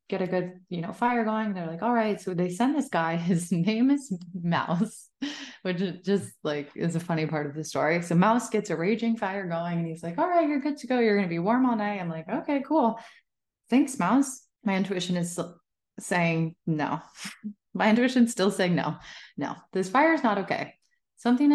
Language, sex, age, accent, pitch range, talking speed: English, female, 20-39, American, 170-225 Hz, 215 wpm